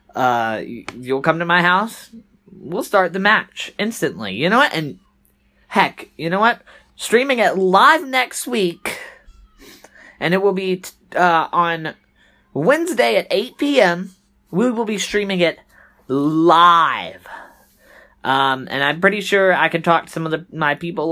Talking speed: 155 wpm